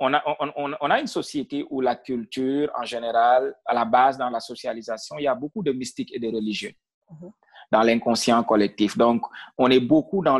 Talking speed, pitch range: 200 wpm, 110-150 Hz